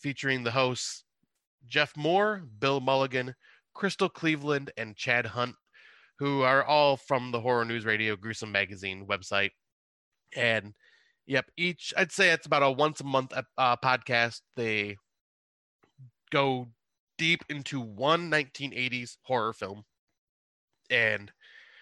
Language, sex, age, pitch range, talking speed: English, male, 30-49, 105-135 Hz, 125 wpm